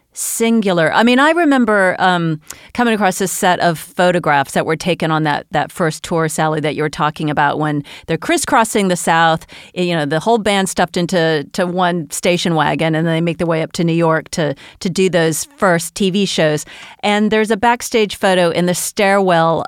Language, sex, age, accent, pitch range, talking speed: English, female, 40-59, American, 165-200 Hz, 200 wpm